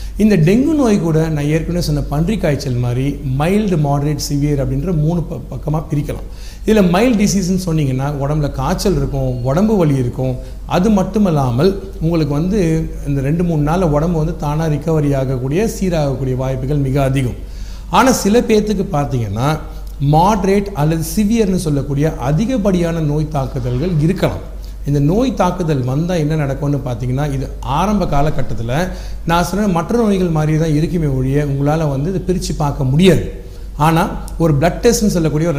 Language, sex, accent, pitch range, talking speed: Tamil, male, native, 140-180 Hz, 150 wpm